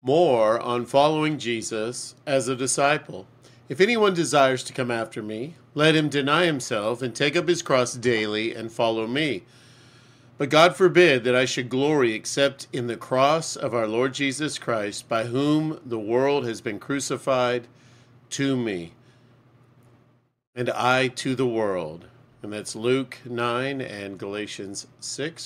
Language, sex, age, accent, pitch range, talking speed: English, male, 40-59, American, 120-135 Hz, 150 wpm